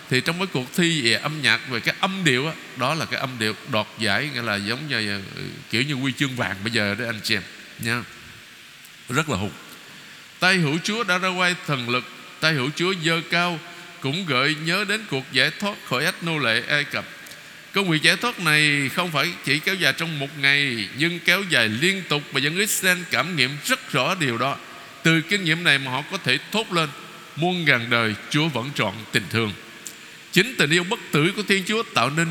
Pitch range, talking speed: 135-180 Hz, 220 wpm